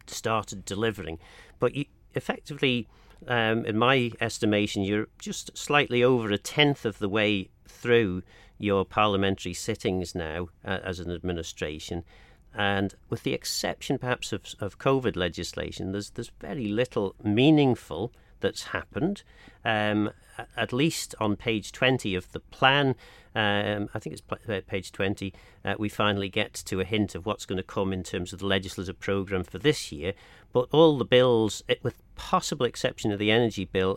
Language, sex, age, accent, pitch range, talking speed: English, male, 40-59, British, 95-115 Hz, 160 wpm